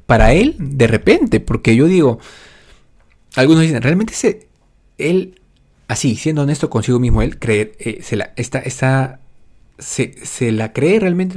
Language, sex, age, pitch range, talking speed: Spanish, male, 30-49, 110-155 Hz, 155 wpm